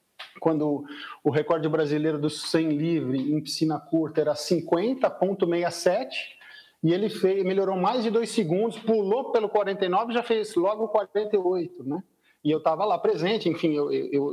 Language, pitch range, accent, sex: Portuguese, 165-225 Hz, Brazilian, male